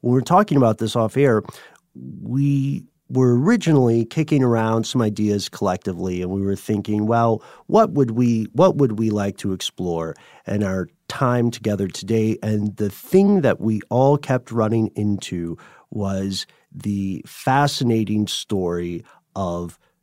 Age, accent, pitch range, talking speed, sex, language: 40-59, American, 105-135 Hz, 140 wpm, male, English